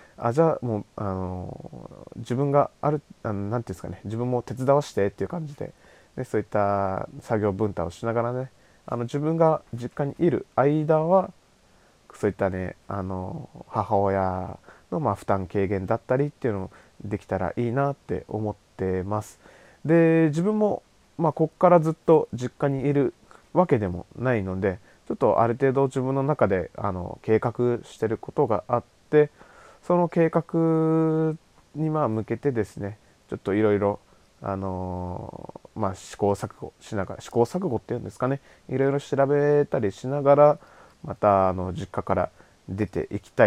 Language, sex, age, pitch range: Japanese, male, 20-39, 100-145 Hz